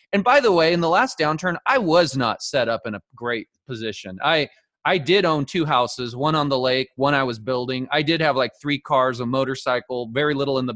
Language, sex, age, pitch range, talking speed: English, male, 20-39, 130-180 Hz, 240 wpm